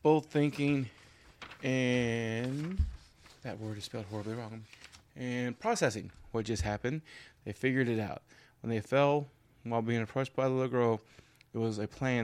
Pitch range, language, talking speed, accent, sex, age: 110-125 Hz, English, 150 wpm, American, male, 20-39